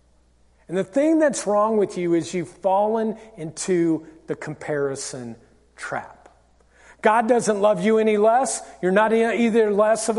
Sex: male